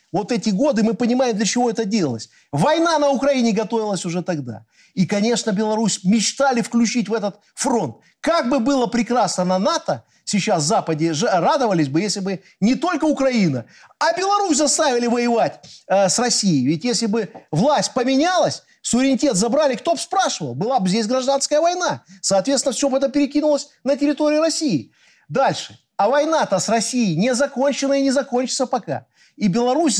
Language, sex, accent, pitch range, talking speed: Russian, male, native, 185-270 Hz, 165 wpm